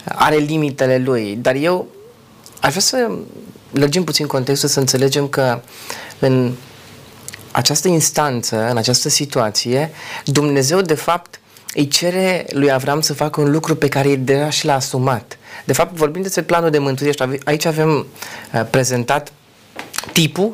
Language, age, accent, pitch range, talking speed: Romanian, 30-49, native, 130-160 Hz, 145 wpm